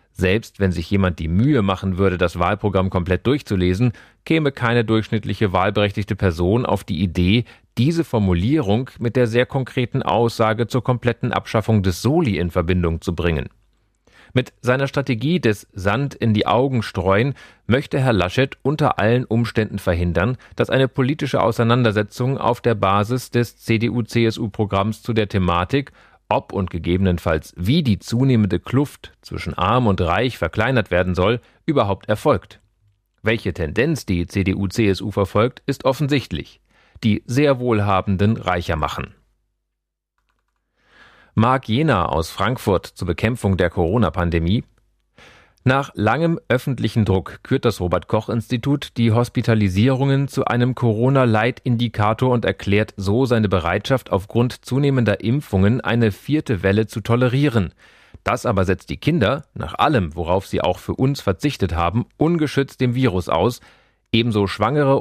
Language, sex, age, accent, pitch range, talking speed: German, male, 40-59, German, 95-125 Hz, 135 wpm